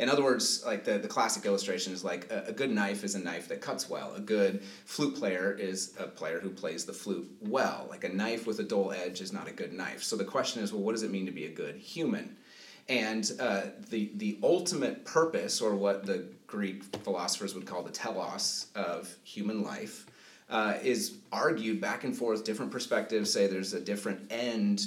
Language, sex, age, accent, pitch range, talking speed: English, male, 30-49, American, 100-125 Hz, 215 wpm